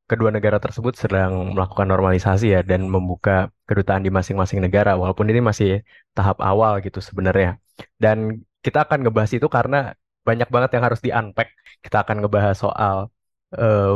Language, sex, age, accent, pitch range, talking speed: Indonesian, male, 20-39, native, 95-115 Hz, 155 wpm